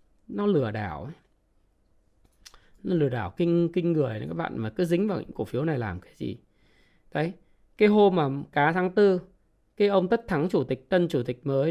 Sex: male